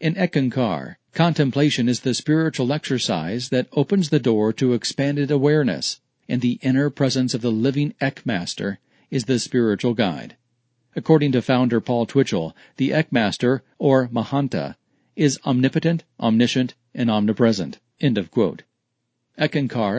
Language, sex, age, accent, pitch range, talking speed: English, male, 50-69, American, 120-145 Hz, 125 wpm